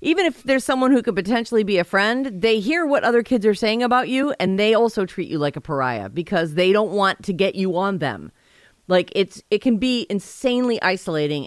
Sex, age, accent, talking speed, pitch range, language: female, 40-59, American, 225 wpm, 150-220 Hz, English